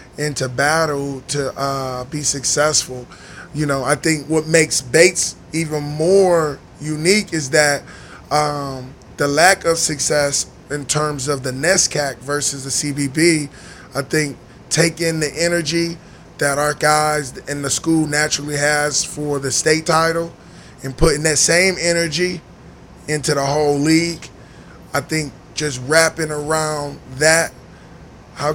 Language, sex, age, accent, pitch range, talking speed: English, male, 20-39, American, 140-160 Hz, 135 wpm